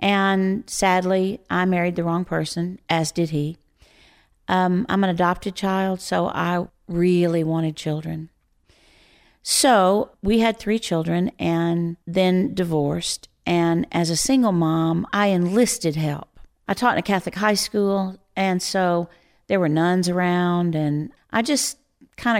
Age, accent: 50-69, American